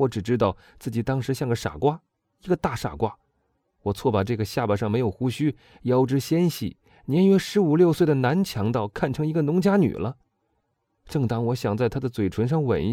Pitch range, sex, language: 110-155 Hz, male, Chinese